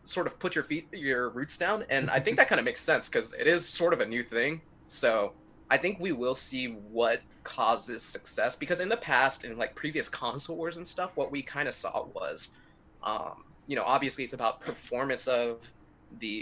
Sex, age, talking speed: male, 20-39, 215 wpm